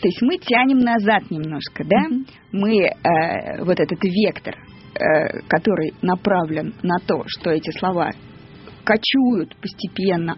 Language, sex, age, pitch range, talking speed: Russian, female, 20-39, 185-245 Hz, 125 wpm